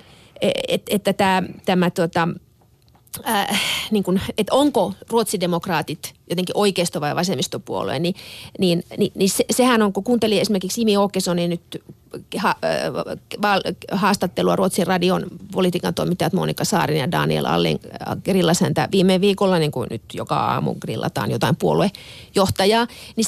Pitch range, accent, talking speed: 175-225 Hz, native, 135 wpm